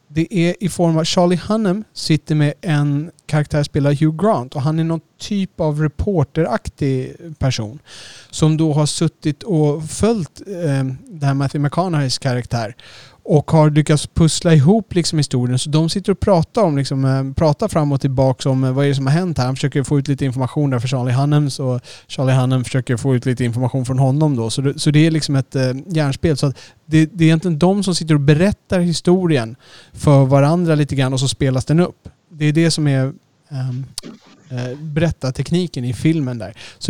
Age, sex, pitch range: 30-49, male, 130-165 Hz